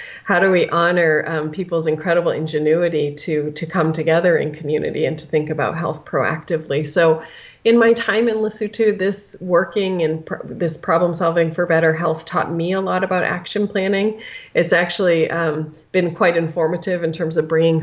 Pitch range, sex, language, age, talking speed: 160-180 Hz, female, English, 30-49, 175 wpm